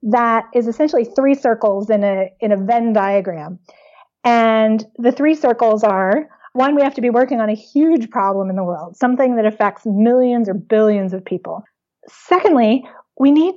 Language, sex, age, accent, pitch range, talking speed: English, female, 30-49, American, 205-260 Hz, 175 wpm